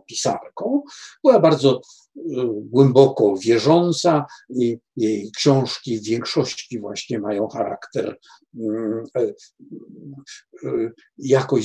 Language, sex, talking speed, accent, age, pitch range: Polish, male, 70 wpm, native, 60-79, 120-190 Hz